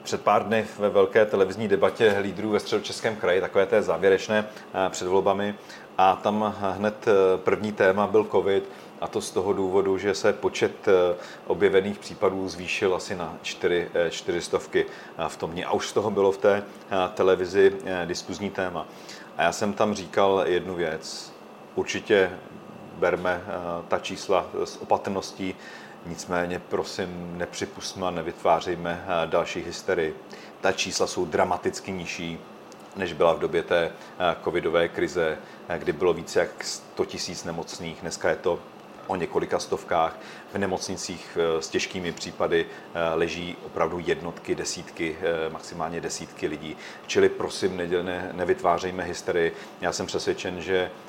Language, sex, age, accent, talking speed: Czech, male, 40-59, native, 135 wpm